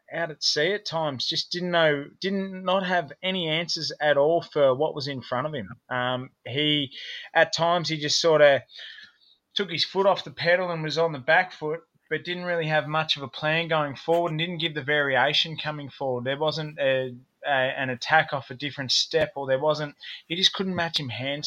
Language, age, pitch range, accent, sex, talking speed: English, 20-39, 125-155 Hz, Australian, male, 220 wpm